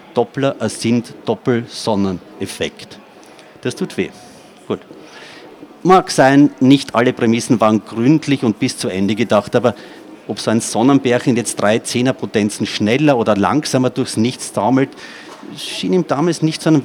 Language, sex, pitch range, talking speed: German, male, 110-135 Hz, 145 wpm